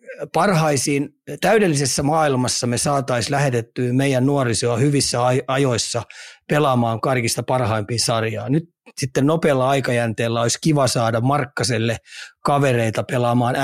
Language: Finnish